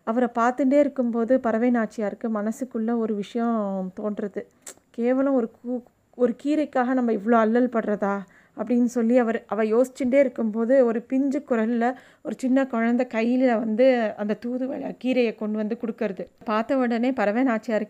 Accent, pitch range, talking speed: native, 215-255 Hz, 135 wpm